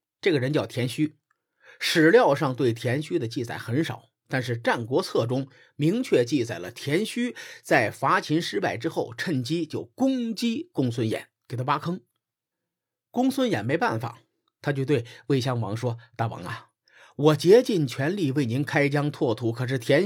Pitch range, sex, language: 125-205 Hz, male, Chinese